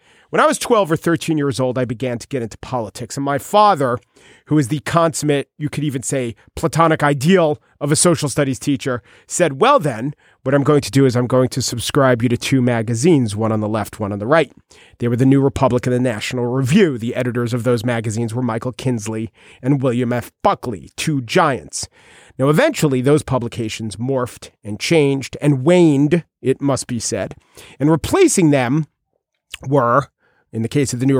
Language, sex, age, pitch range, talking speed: English, male, 40-59, 125-160 Hz, 200 wpm